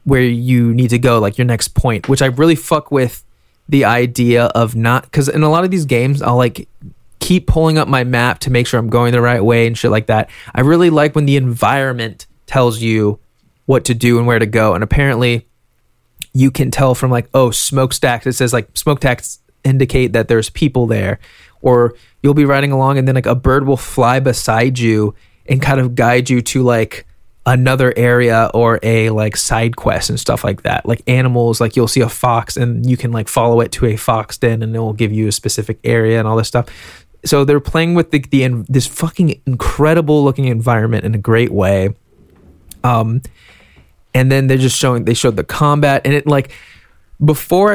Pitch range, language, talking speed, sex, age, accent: 115-135 Hz, English, 210 wpm, male, 20-39, American